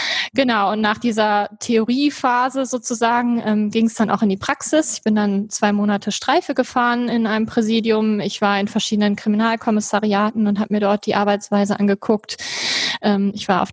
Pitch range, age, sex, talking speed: 205-245 Hz, 20-39, female, 175 wpm